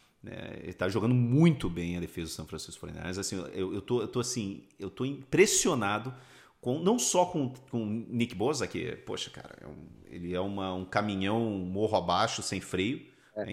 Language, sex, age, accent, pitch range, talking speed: Portuguese, male, 40-59, Brazilian, 95-125 Hz, 200 wpm